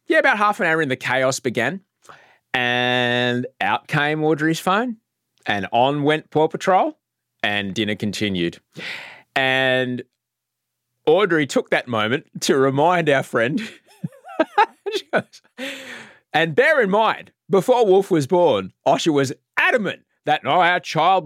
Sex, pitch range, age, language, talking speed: male, 125-185 Hz, 30-49, English, 125 wpm